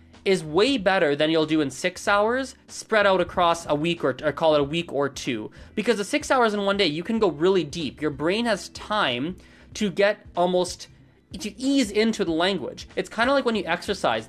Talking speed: 225 wpm